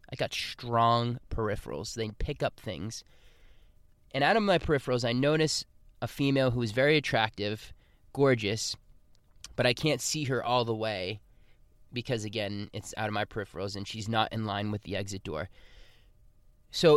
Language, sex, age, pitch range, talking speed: English, male, 20-39, 105-145 Hz, 165 wpm